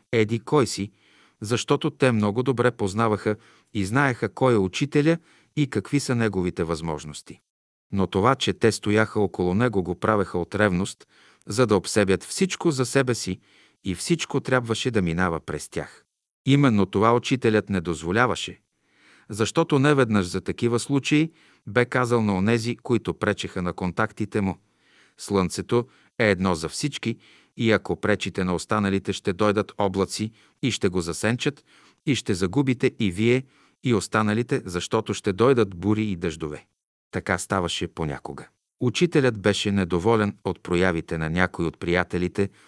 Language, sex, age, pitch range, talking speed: Bulgarian, male, 50-69, 90-125 Hz, 150 wpm